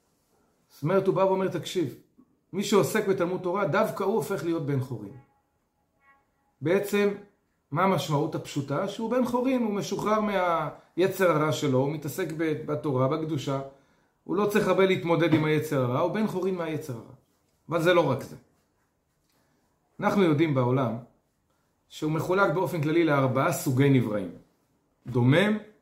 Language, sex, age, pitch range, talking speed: Hebrew, male, 40-59, 135-200 Hz, 140 wpm